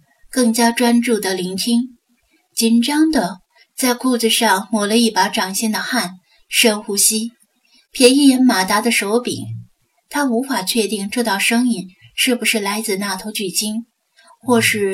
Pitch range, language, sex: 210-245 Hz, Chinese, female